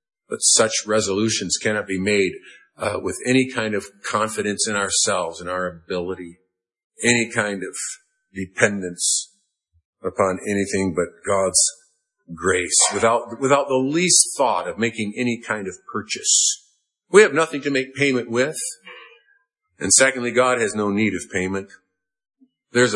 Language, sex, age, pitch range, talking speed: English, male, 50-69, 100-140 Hz, 140 wpm